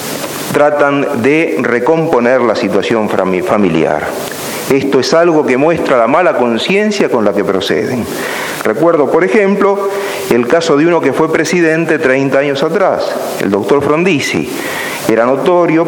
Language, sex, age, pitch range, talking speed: Spanish, male, 40-59, 135-180 Hz, 135 wpm